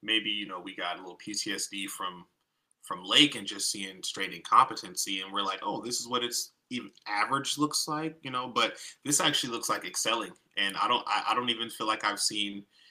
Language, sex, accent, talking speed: English, male, American, 220 wpm